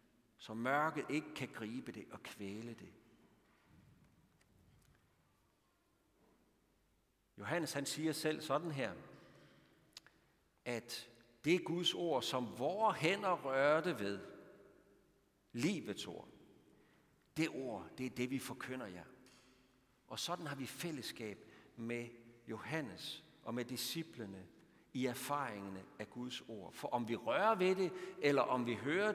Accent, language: native, Danish